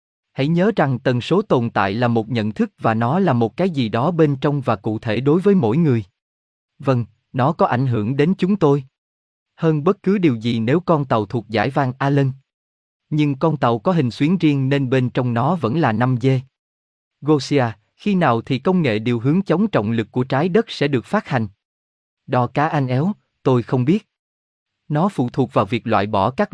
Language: Vietnamese